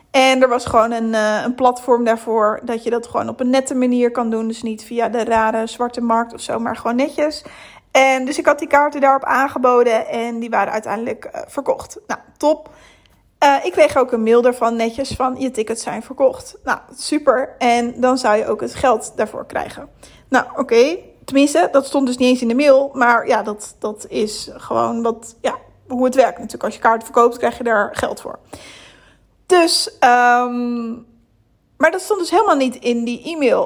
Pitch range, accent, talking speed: 235-280 Hz, Dutch, 200 wpm